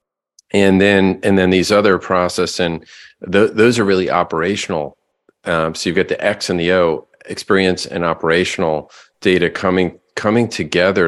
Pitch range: 80-95 Hz